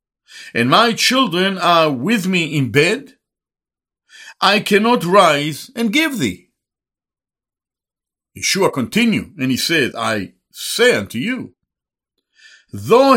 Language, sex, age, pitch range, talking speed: English, male, 60-79, 160-245 Hz, 110 wpm